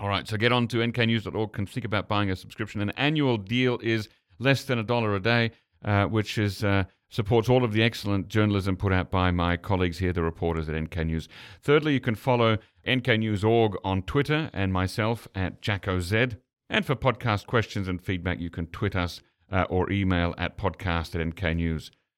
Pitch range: 100-125 Hz